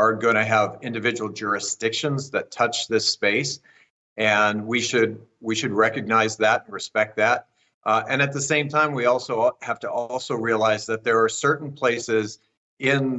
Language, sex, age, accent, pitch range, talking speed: English, male, 50-69, American, 110-130 Hz, 175 wpm